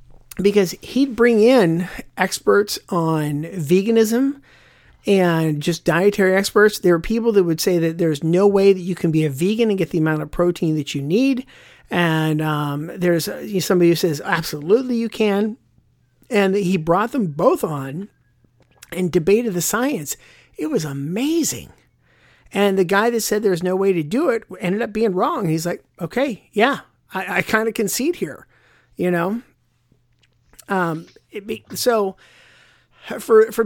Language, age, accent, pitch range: English, 50-69, American, 160-205 Hz